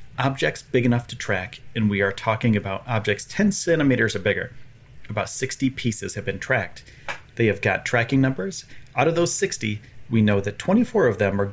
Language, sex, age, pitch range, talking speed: English, male, 30-49, 105-130 Hz, 195 wpm